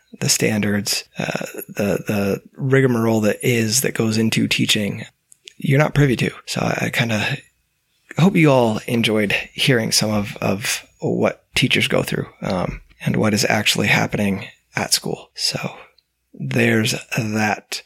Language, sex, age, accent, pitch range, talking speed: English, male, 20-39, American, 105-135 Hz, 145 wpm